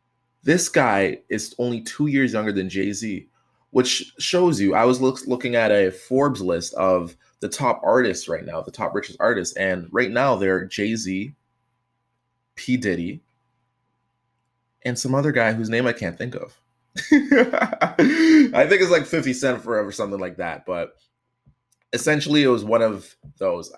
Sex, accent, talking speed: male, American, 160 wpm